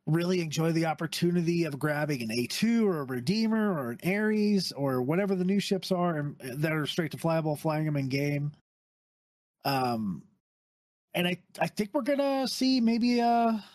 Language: English